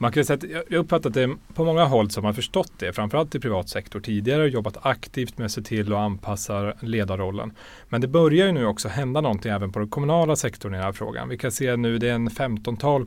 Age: 30-49